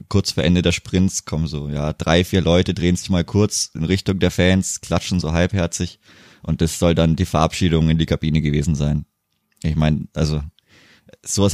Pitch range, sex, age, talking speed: 85-100 Hz, male, 20-39, 190 wpm